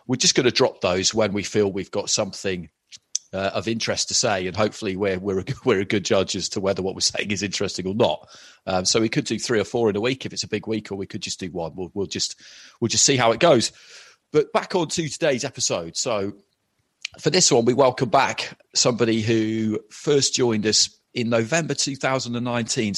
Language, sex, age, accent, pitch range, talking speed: English, male, 30-49, British, 100-125 Hz, 240 wpm